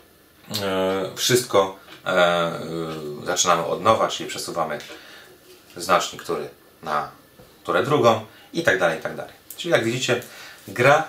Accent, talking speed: native, 115 wpm